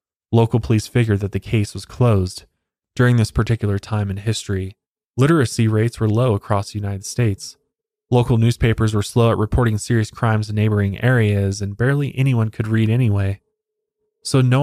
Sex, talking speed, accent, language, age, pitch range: male, 170 wpm, American, English, 20-39, 100-120 Hz